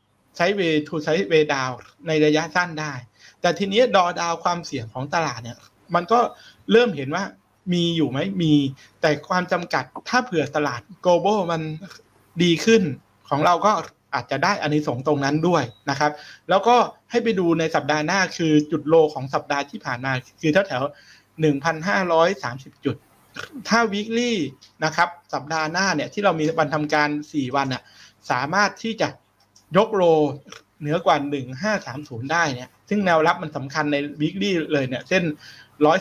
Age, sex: 60-79, male